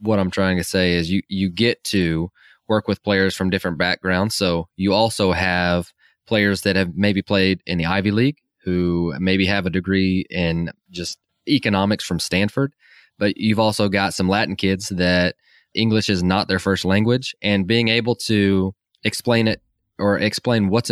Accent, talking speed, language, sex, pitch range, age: American, 180 wpm, English, male, 95-110 Hz, 20-39